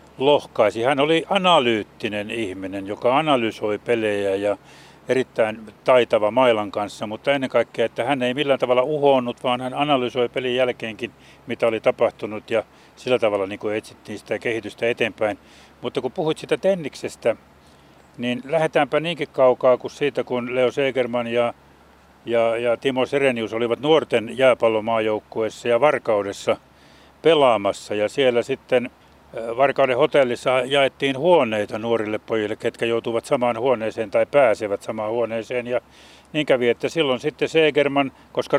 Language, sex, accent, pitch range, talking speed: Finnish, male, native, 110-135 Hz, 140 wpm